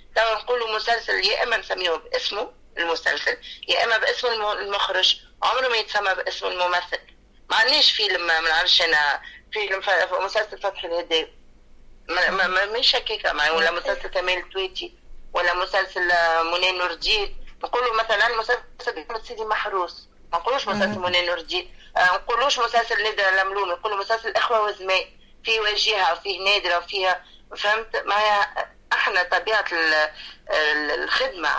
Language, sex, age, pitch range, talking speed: Arabic, female, 30-49, 180-235 Hz, 135 wpm